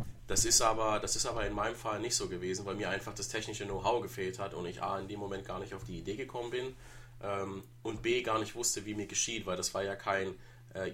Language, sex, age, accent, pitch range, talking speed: German, male, 30-49, German, 100-120 Hz, 265 wpm